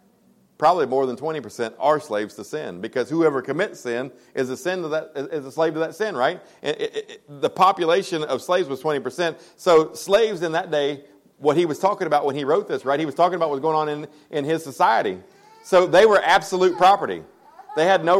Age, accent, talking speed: 40-59, American, 200 wpm